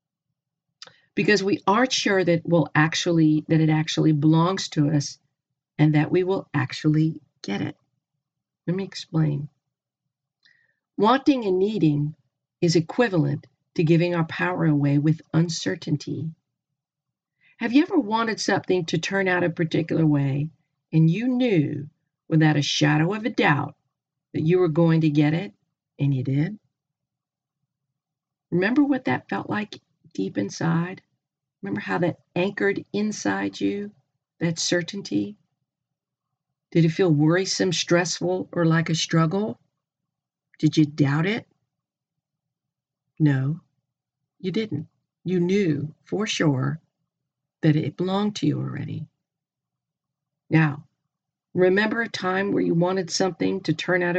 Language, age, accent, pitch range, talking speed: English, 50-69, American, 145-175 Hz, 125 wpm